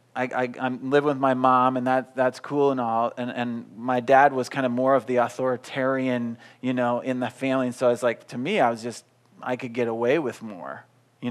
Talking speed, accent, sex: 240 wpm, American, male